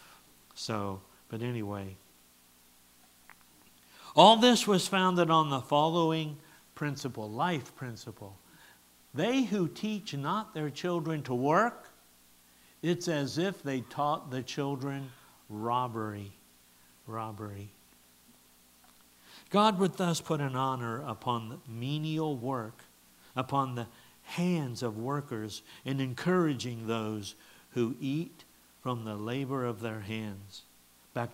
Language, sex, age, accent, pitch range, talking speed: English, male, 60-79, American, 100-160 Hz, 105 wpm